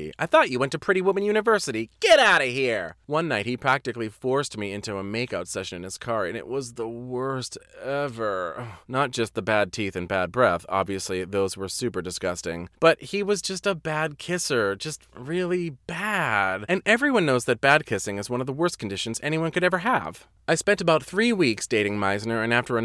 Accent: American